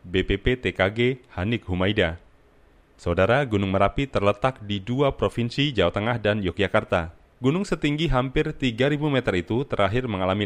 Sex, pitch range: male, 95-125 Hz